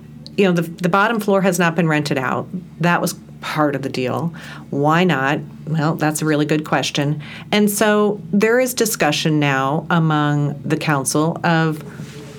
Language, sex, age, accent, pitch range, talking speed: English, female, 40-59, American, 145-180 Hz, 170 wpm